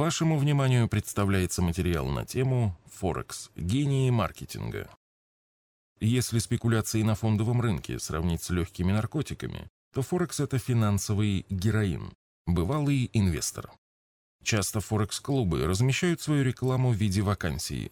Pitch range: 90-125 Hz